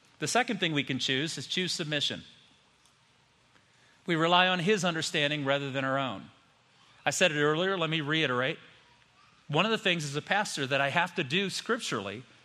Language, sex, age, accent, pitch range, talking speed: English, male, 40-59, American, 150-205 Hz, 185 wpm